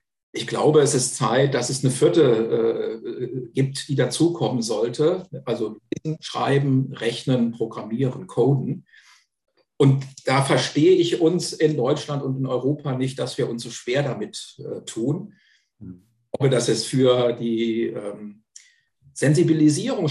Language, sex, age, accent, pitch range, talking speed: German, male, 50-69, German, 120-150 Hz, 135 wpm